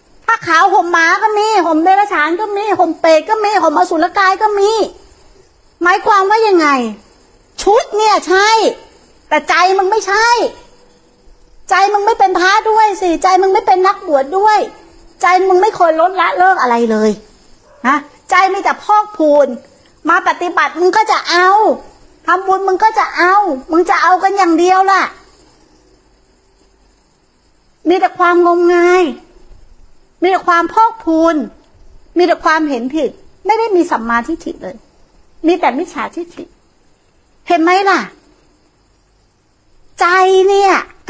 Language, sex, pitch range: Thai, female, 330-390 Hz